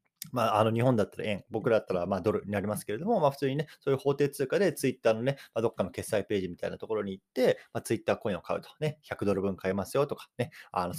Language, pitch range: Japanese, 105-165 Hz